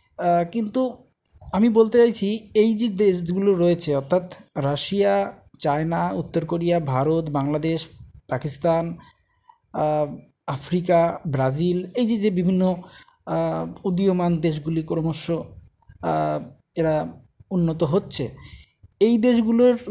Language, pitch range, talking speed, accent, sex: Bengali, 150-190 Hz, 80 wpm, native, male